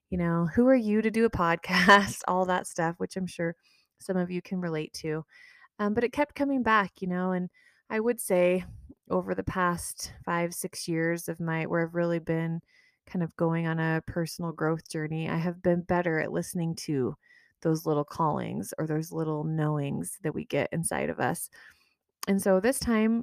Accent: American